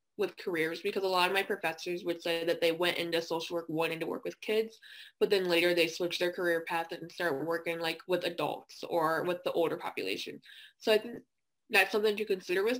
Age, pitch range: 20-39, 170-215 Hz